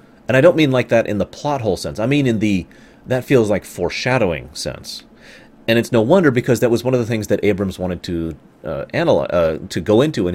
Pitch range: 90-115 Hz